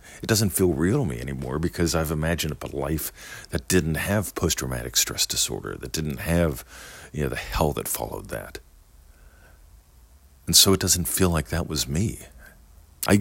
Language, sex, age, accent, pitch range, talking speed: English, male, 50-69, American, 70-85 Hz, 175 wpm